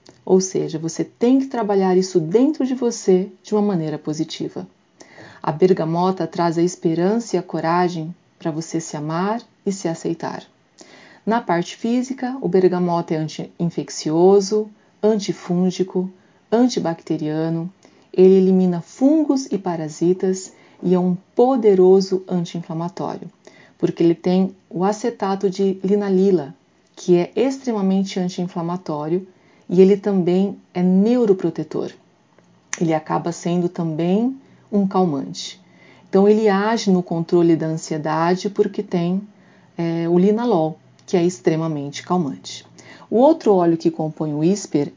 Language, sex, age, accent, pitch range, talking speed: Portuguese, female, 40-59, Brazilian, 170-200 Hz, 125 wpm